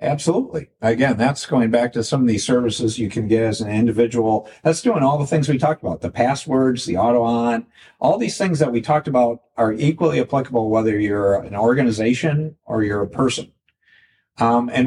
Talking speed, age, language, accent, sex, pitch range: 195 wpm, 50-69, English, American, male, 110-140 Hz